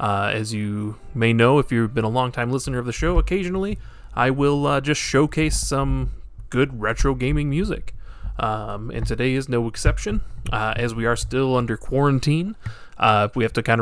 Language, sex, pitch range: English, male, 115-140 Hz